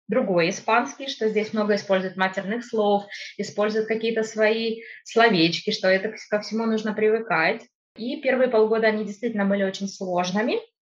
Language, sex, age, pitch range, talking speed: Russian, female, 20-39, 190-220 Hz, 150 wpm